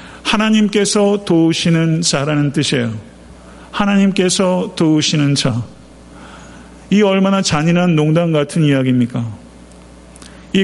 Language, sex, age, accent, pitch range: Korean, male, 40-59, native, 130-185 Hz